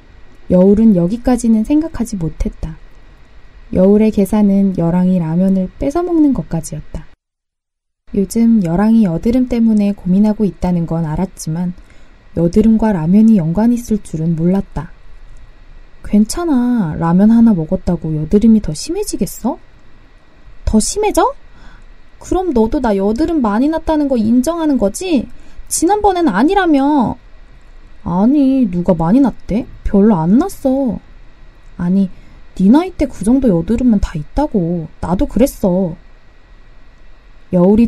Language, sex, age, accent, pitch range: Korean, female, 20-39, native, 175-240 Hz